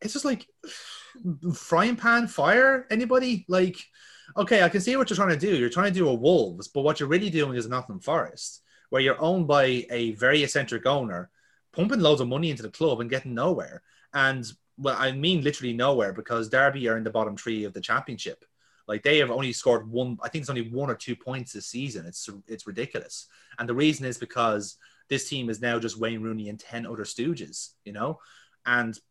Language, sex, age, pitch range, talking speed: English, male, 30-49, 110-150 Hz, 210 wpm